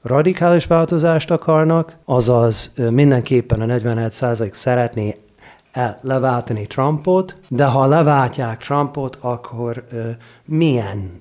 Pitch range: 115-145 Hz